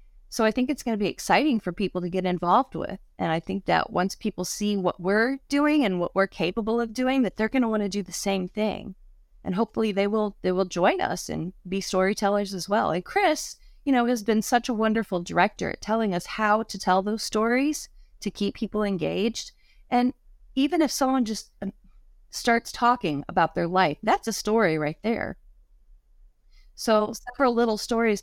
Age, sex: 30-49, female